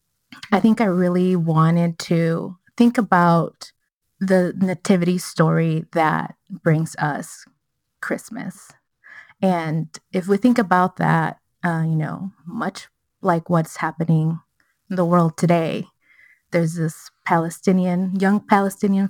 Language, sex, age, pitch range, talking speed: English, female, 20-39, 170-205 Hz, 115 wpm